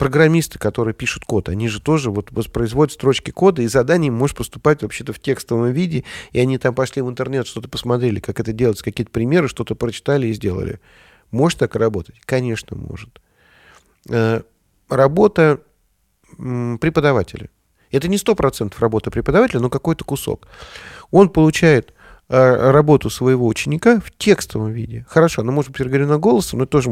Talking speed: 160 wpm